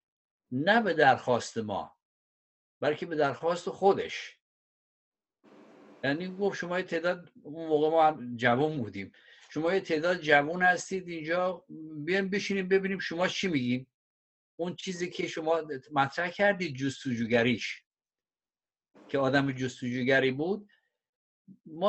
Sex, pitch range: male, 145-195 Hz